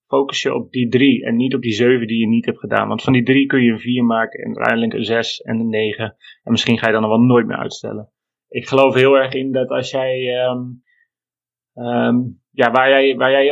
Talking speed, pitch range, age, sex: 250 wpm, 120-135 Hz, 30-49, male